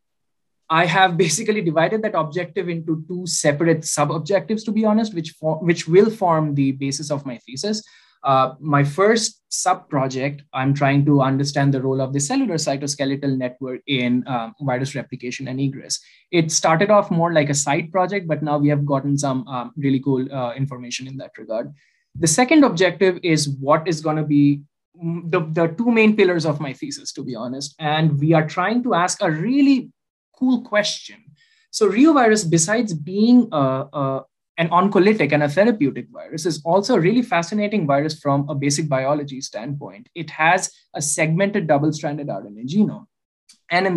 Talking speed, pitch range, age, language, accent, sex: 170 wpm, 140-190 Hz, 20-39, English, Indian, male